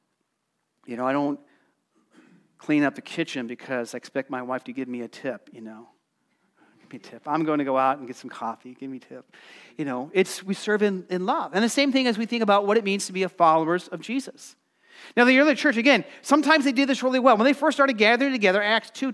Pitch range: 165-220 Hz